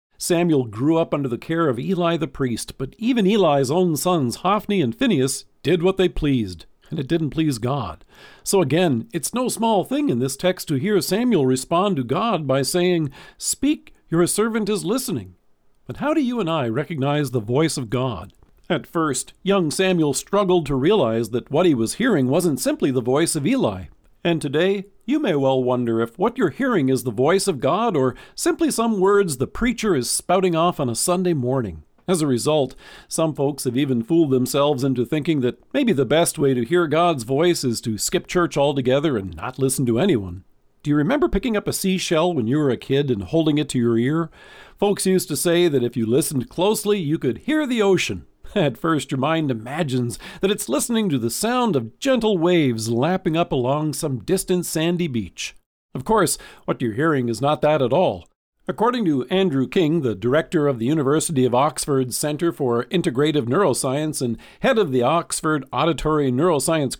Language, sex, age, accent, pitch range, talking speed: English, male, 50-69, American, 130-180 Hz, 200 wpm